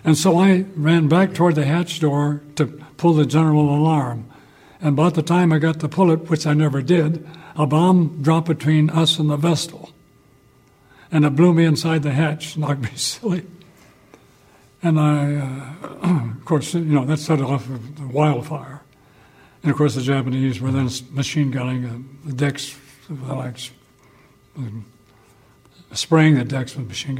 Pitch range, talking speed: 135-155 Hz, 160 wpm